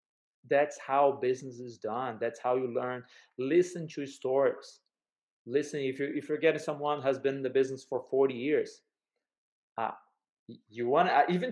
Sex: male